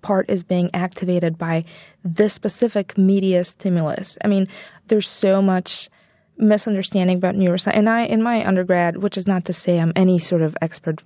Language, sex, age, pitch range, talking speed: English, female, 20-39, 175-205 Hz, 175 wpm